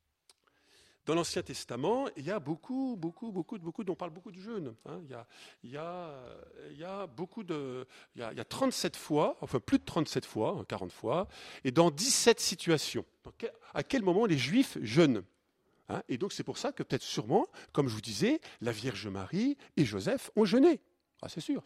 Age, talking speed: 50-69, 180 wpm